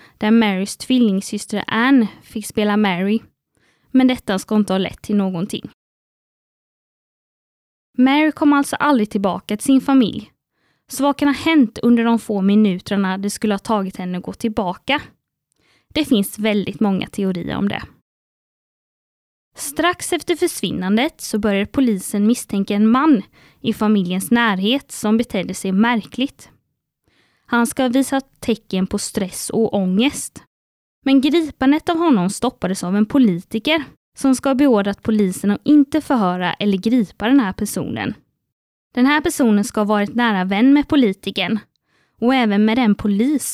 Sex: female